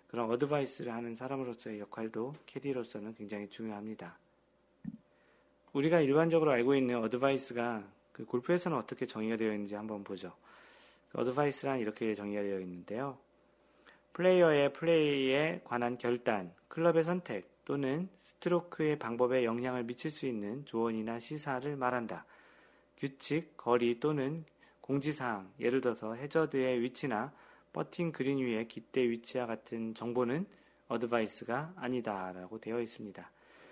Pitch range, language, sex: 110-140 Hz, Korean, male